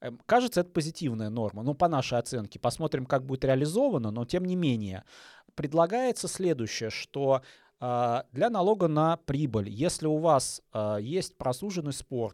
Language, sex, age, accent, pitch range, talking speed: Russian, male, 20-39, native, 125-170 Hz, 140 wpm